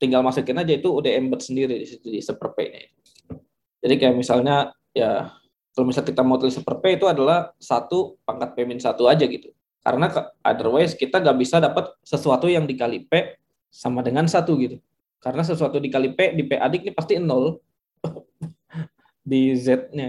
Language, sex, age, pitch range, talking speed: Indonesian, male, 20-39, 125-160 Hz, 160 wpm